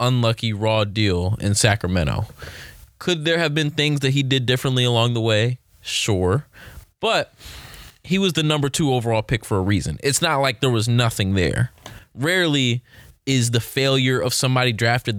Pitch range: 115-145 Hz